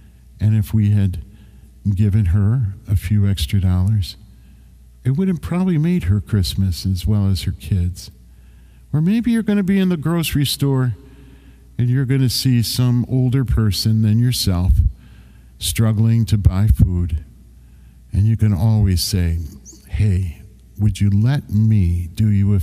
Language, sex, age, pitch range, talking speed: English, male, 50-69, 85-115 Hz, 150 wpm